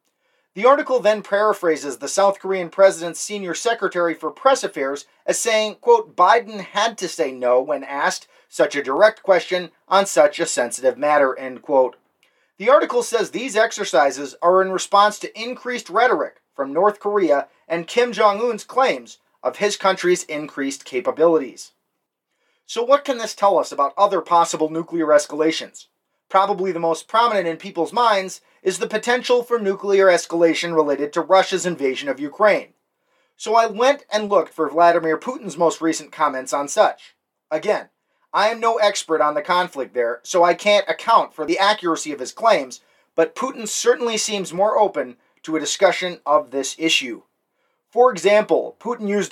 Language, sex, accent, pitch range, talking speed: English, male, American, 160-225 Hz, 165 wpm